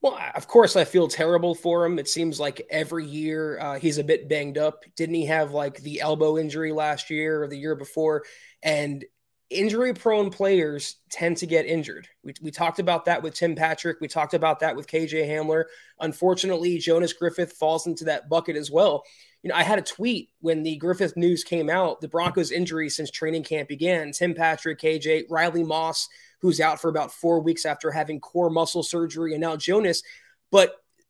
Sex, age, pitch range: male, 20-39, 155-190 Hz